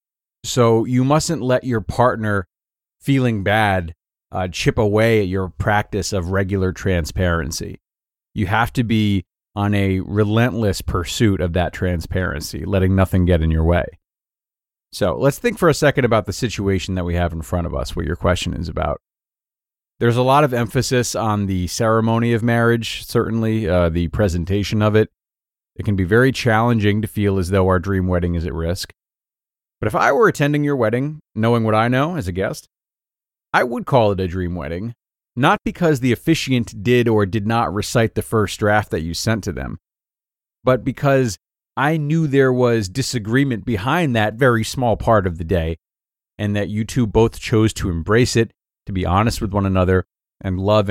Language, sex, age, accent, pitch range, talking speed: English, male, 30-49, American, 90-120 Hz, 185 wpm